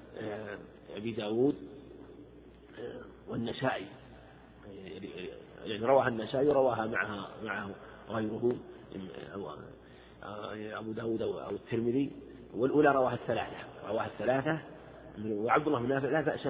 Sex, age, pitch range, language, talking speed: male, 50-69, 115-145 Hz, Arabic, 90 wpm